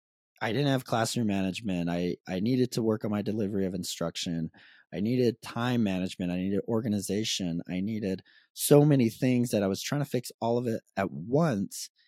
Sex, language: male, English